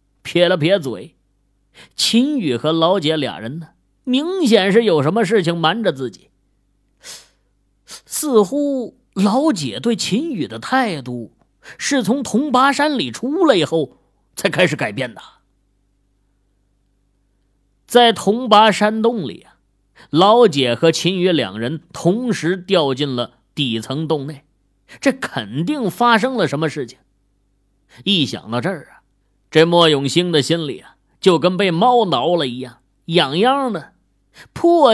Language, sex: Chinese, male